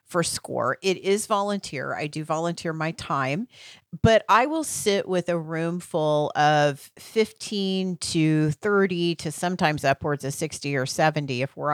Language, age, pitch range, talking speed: English, 40-59, 145-185 Hz, 160 wpm